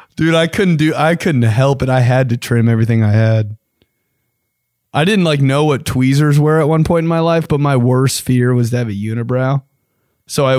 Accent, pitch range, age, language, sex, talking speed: American, 120-145 Hz, 20-39, English, male, 220 wpm